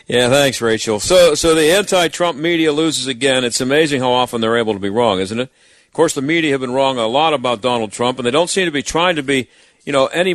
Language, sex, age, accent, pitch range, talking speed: English, male, 50-69, American, 130-165 Hz, 260 wpm